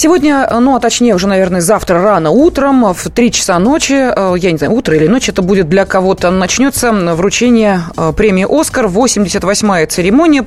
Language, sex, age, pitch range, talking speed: Russian, female, 20-39, 195-250 Hz, 165 wpm